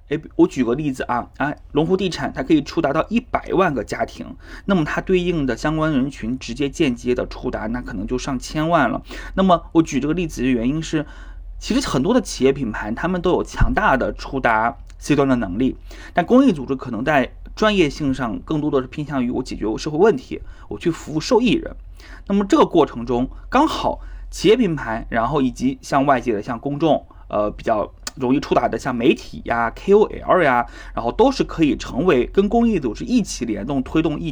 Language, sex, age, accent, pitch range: Chinese, male, 20-39, native, 130-175 Hz